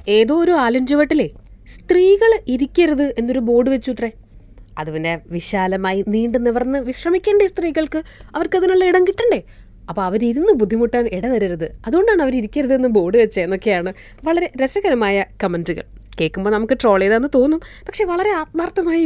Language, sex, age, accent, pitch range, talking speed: Malayalam, female, 20-39, native, 200-300 Hz, 120 wpm